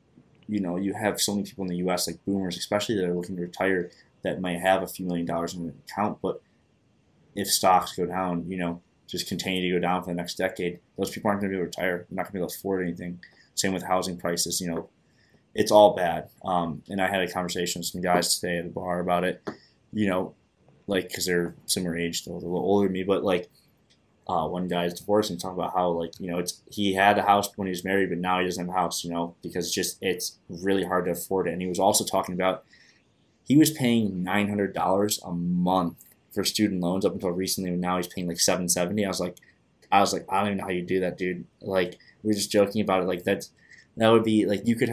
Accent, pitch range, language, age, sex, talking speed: American, 90-100 Hz, English, 20-39, male, 260 wpm